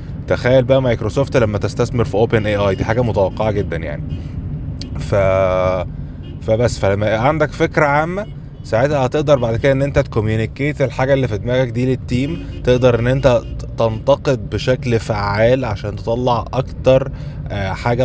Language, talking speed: Arabic, 145 wpm